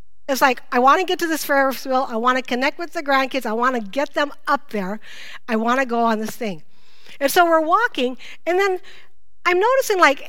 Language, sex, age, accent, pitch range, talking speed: English, female, 50-69, American, 220-290 Hz, 235 wpm